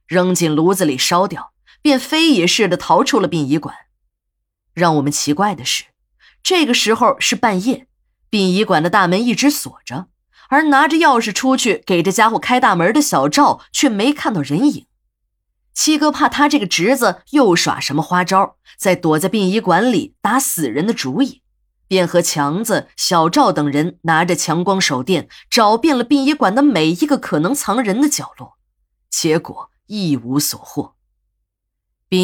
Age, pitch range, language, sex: 20-39, 165-270 Hz, Chinese, female